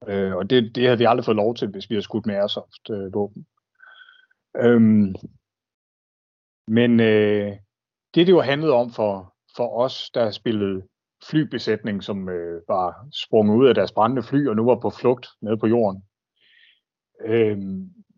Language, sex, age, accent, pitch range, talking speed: Danish, male, 30-49, native, 105-135 Hz, 155 wpm